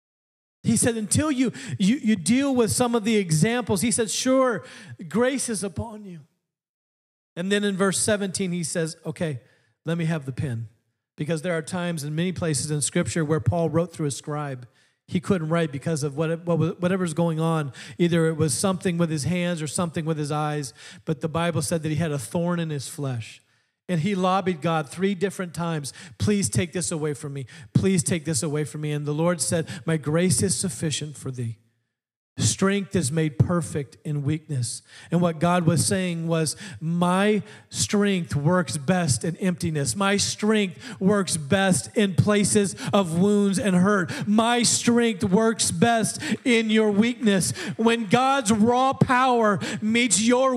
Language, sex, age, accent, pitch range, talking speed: English, male, 40-59, American, 155-230 Hz, 180 wpm